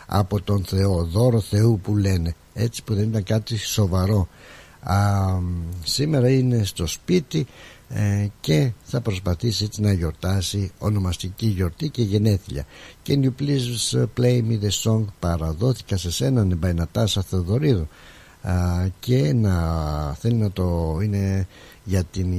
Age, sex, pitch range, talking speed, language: 60-79, male, 95-120 Hz, 125 wpm, Greek